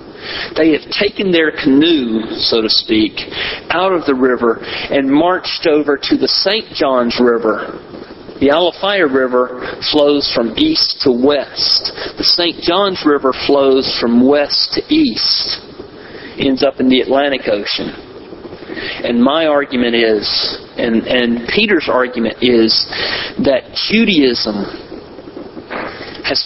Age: 40-59